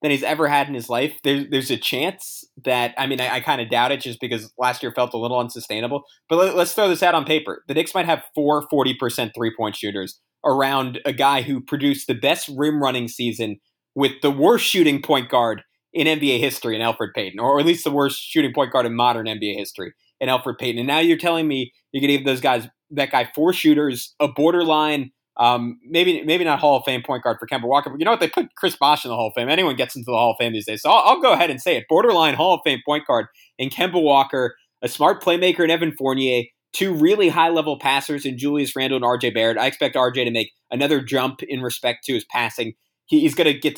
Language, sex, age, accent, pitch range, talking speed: English, male, 20-39, American, 125-155 Hz, 250 wpm